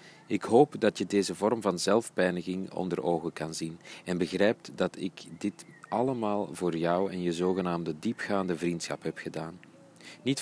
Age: 40-59